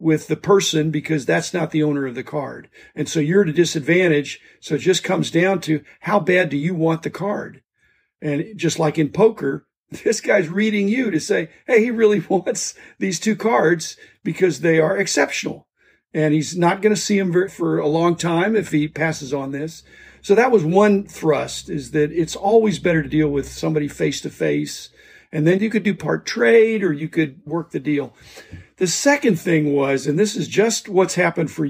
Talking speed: 200 wpm